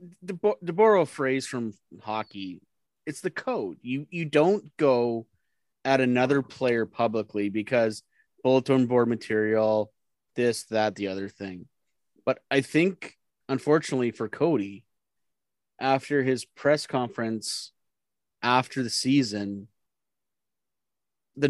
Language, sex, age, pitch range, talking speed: English, male, 30-49, 115-165 Hz, 110 wpm